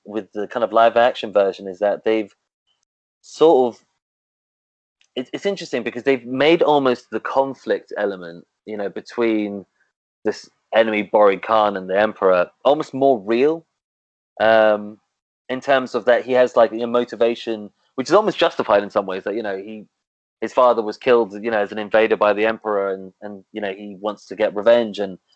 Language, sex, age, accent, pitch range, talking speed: English, male, 20-39, British, 105-125 Hz, 185 wpm